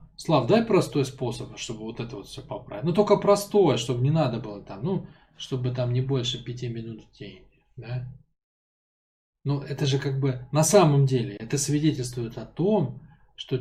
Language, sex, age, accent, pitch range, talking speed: Russian, male, 20-39, native, 125-155 Hz, 180 wpm